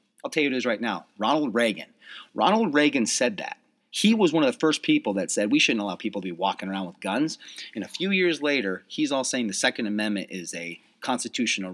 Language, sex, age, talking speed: English, male, 30-49, 240 wpm